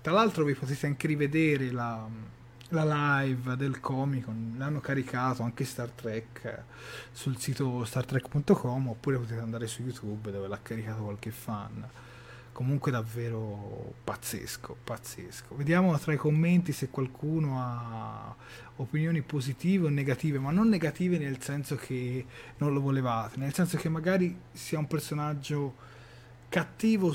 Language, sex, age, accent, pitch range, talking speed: Italian, male, 30-49, native, 120-155 Hz, 135 wpm